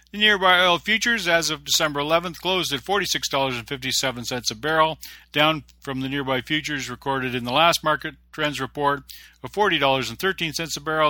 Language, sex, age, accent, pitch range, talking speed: English, male, 50-69, American, 125-155 Hz, 155 wpm